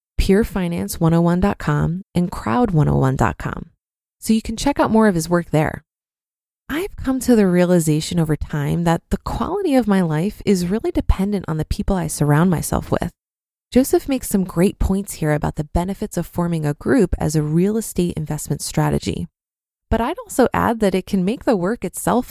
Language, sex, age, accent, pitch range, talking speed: English, female, 20-39, American, 160-220 Hz, 180 wpm